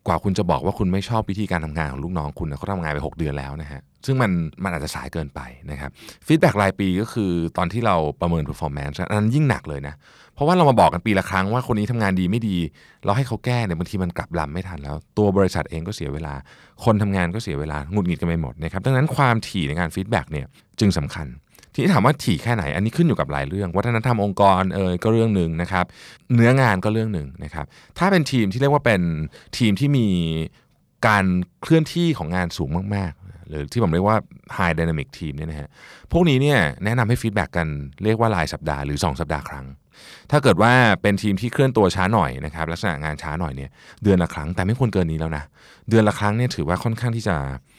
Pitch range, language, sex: 80-110 Hz, Thai, male